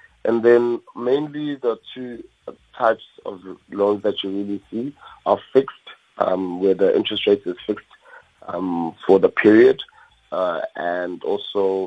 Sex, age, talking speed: male, 30-49, 140 wpm